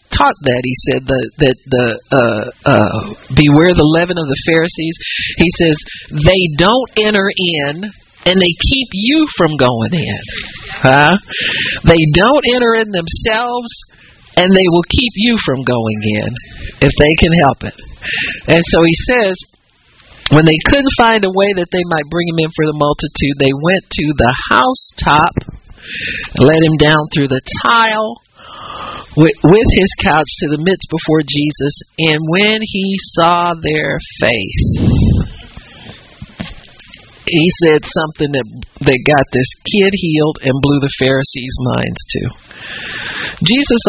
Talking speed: 145 wpm